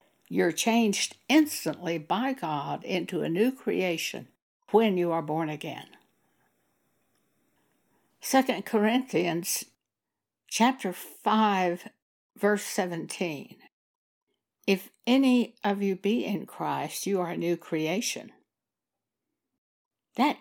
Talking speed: 95 wpm